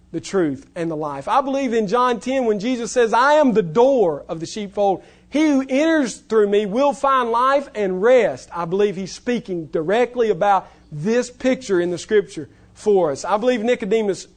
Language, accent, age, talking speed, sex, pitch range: English, American, 40-59, 190 wpm, male, 145-220 Hz